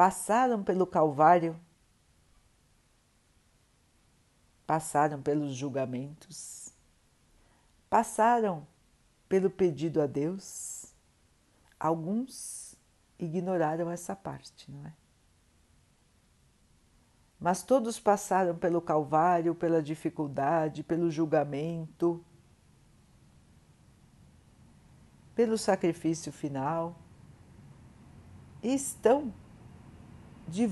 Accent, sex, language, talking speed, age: Brazilian, female, Portuguese, 65 wpm, 60-79